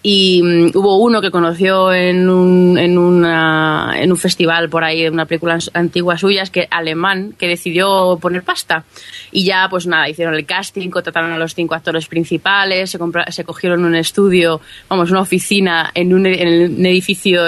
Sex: female